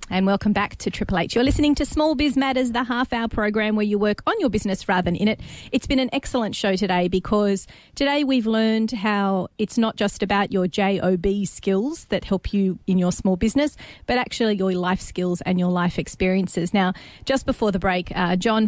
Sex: female